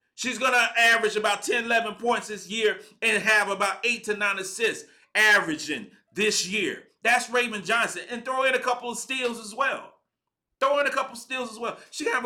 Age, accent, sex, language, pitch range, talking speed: 40-59, American, male, English, 160-230 Hz, 215 wpm